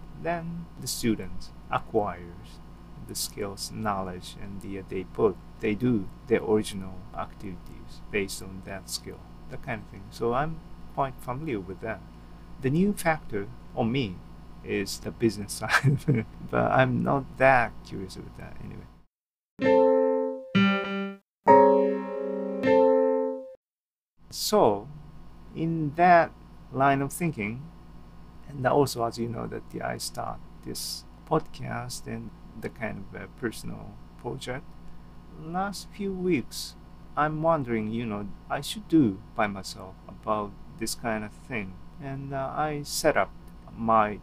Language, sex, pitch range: Japanese, male, 95-155 Hz